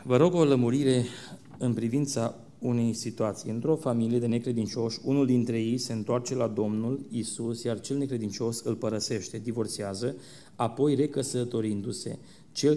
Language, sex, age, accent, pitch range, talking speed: Romanian, male, 30-49, native, 110-130 Hz, 135 wpm